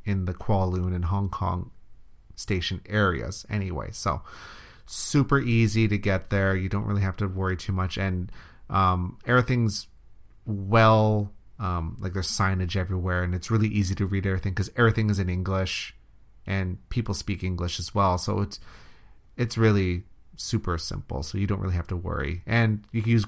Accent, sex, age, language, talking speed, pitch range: American, male, 30-49, English, 175 wpm, 95-110 Hz